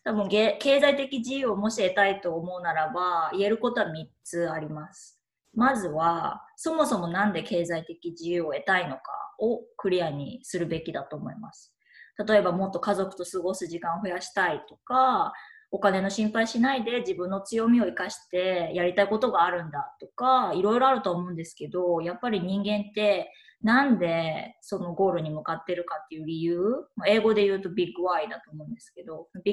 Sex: female